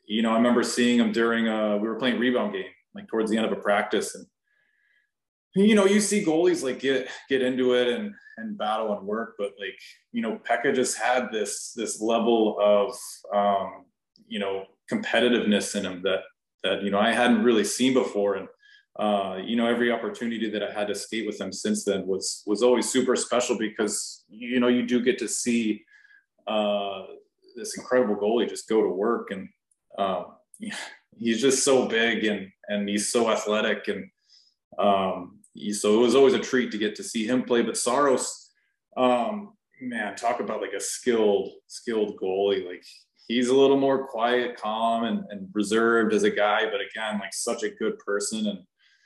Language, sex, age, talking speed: English, male, 20-39, 190 wpm